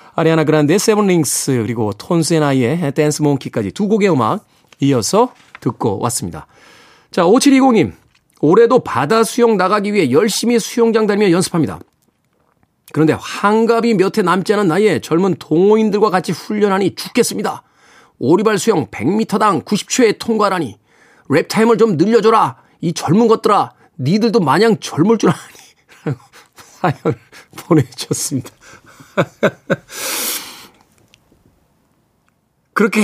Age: 40-59